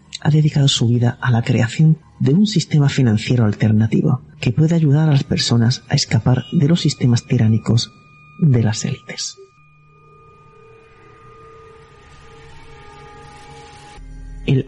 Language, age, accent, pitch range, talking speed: Spanish, 40-59, Spanish, 120-155 Hz, 115 wpm